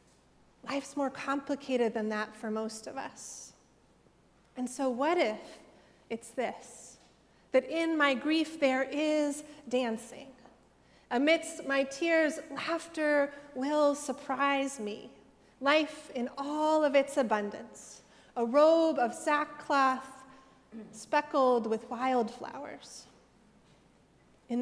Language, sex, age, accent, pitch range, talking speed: English, female, 30-49, American, 250-300 Hz, 105 wpm